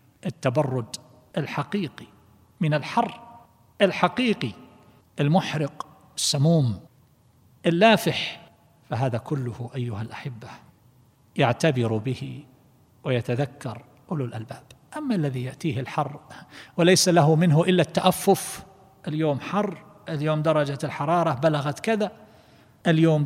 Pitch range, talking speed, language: 130-170 Hz, 90 wpm, Arabic